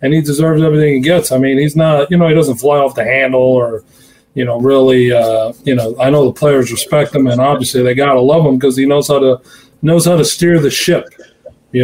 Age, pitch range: 40-59, 130-175 Hz